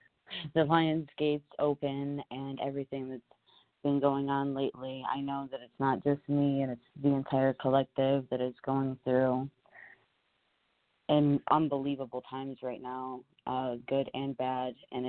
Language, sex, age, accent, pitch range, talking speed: English, female, 30-49, American, 130-140 Hz, 145 wpm